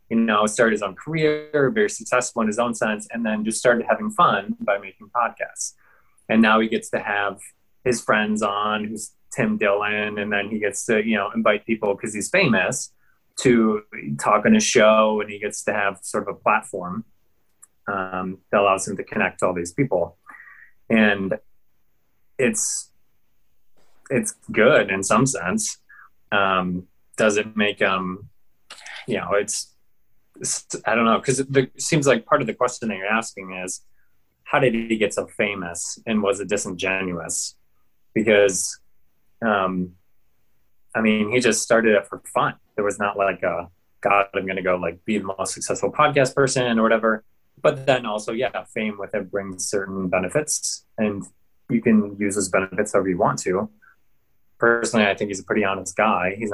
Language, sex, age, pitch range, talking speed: English, male, 20-39, 95-115 Hz, 175 wpm